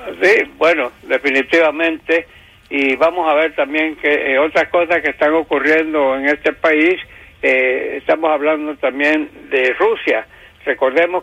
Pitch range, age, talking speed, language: 145-165 Hz, 60-79, 135 wpm, English